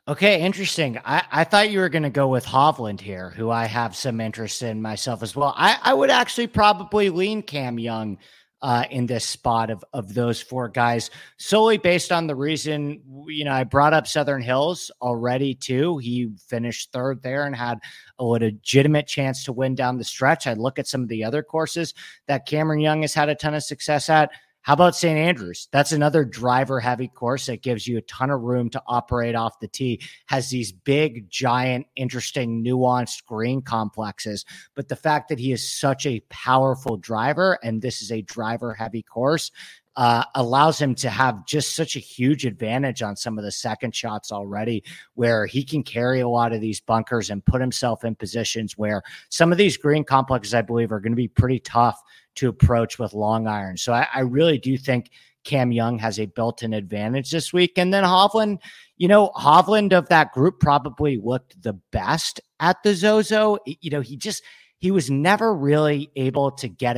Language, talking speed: English, 195 wpm